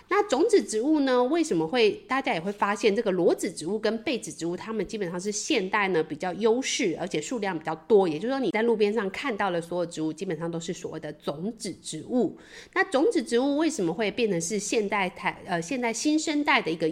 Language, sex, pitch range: Chinese, female, 175-250 Hz